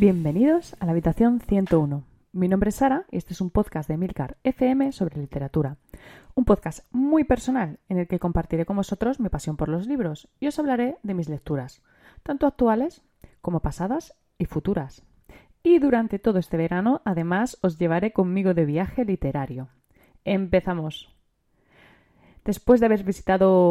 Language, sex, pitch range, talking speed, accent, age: Spanish, female, 170-235 Hz, 160 wpm, Spanish, 20-39